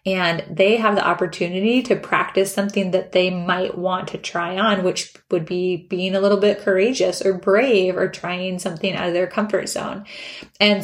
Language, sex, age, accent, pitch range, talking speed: English, female, 20-39, American, 180-200 Hz, 190 wpm